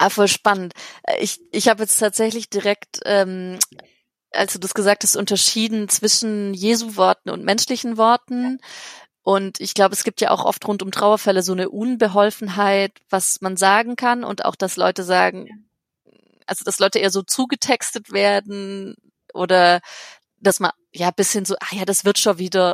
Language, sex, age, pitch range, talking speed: German, female, 30-49, 180-210 Hz, 165 wpm